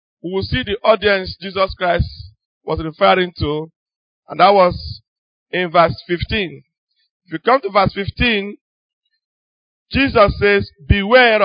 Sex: male